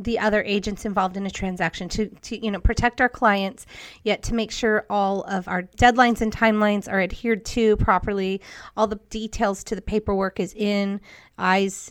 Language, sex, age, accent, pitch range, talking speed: English, female, 30-49, American, 190-220 Hz, 185 wpm